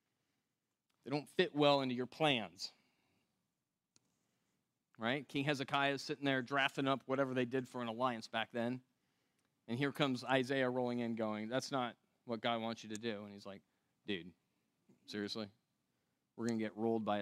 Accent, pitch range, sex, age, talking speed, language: American, 115-175 Hz, male, 30-49, 170 wpm, English